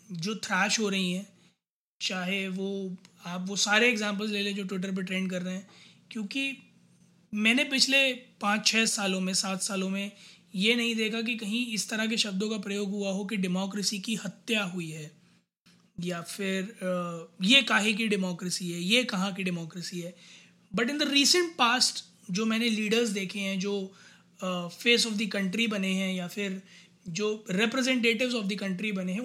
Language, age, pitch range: Hindi, 20-39, 190-245 Hz